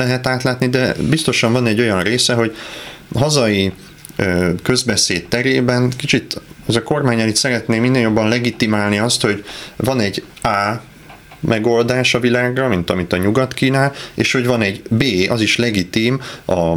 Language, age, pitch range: Hungarian, 30-49, 95-125 Hz